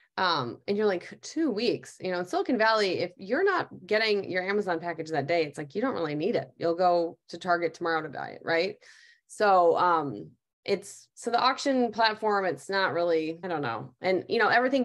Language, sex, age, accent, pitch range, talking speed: English, female, 20-39, American, 165-225 Hz, 215 wpm